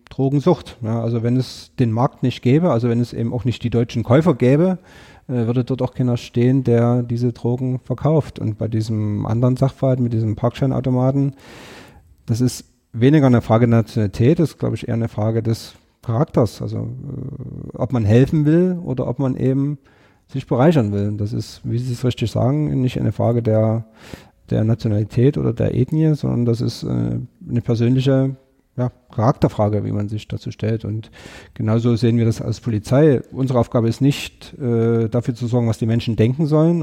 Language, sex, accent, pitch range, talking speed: German, male, German, 115-135 Hz, 185 wpm